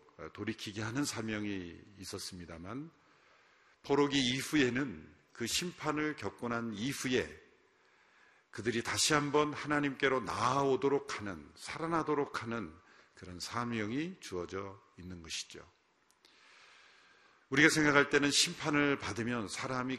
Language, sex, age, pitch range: Korean, male, 50-69, 100-145 Hz